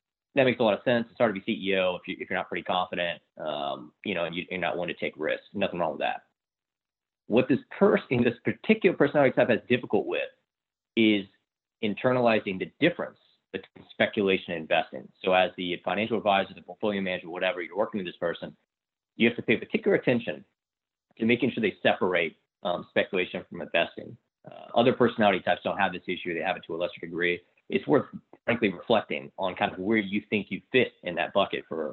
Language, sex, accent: English, male, American